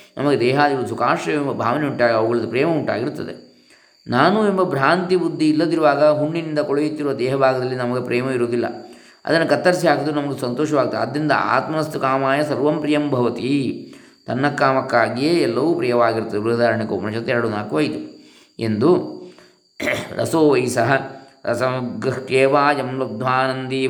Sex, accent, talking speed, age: male, native, 110 wpm, 20-39